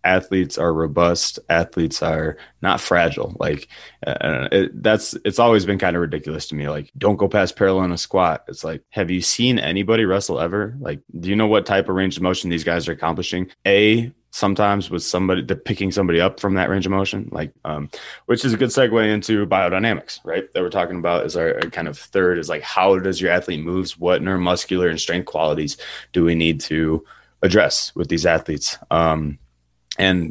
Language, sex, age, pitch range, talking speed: English, male, 20-39, 85-95 Hz, 200 wpm